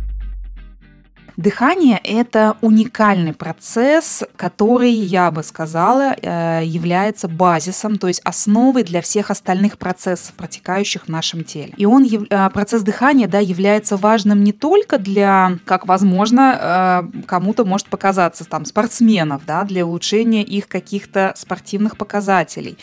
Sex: female